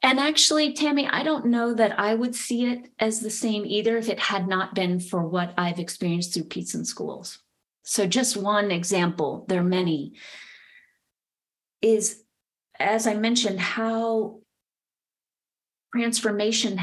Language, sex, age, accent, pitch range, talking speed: English, female, 30-49, American, 175-225 Hz, 145 wpm